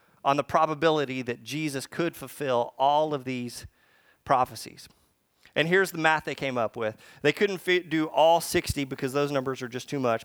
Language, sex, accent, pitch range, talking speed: English, male, American, 125-165 Hz, 180 wpm